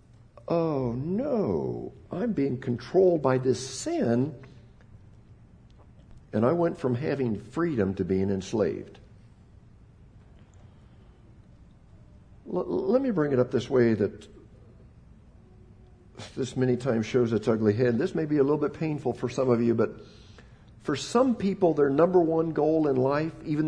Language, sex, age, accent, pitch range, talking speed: English, male, 60-79, American, 110-165 Hz, 135 wpm